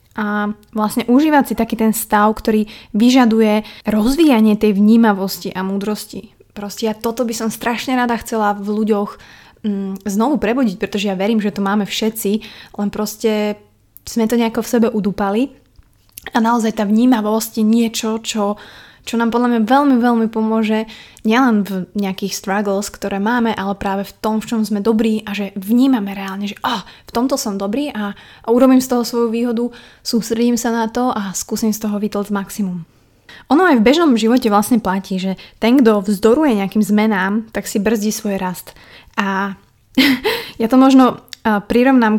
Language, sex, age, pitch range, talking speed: Slovak, female, 20-39, 205-235 Hz, 170 wpm